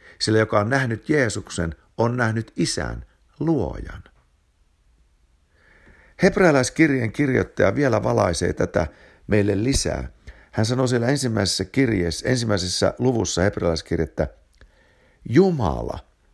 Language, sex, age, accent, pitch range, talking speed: Finnish, male, 60-79, native, 75-115 Hz, 90 wpm